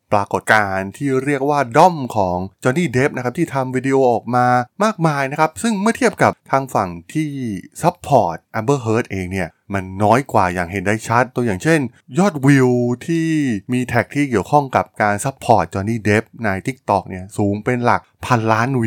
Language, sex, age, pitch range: Thai, male, 20-39, 100-145 Hz